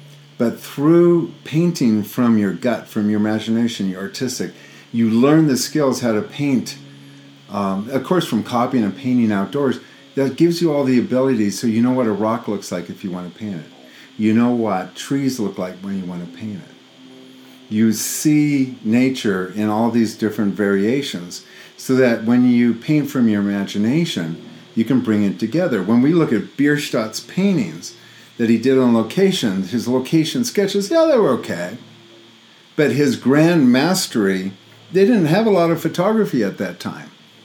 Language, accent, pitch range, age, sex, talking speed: English, American, 110-145 Hz, 50-69, male, 180 wpm